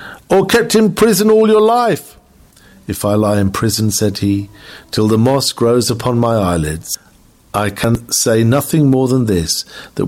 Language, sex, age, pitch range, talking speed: English, male, 50-69, 100-135 Hz, 175 wpm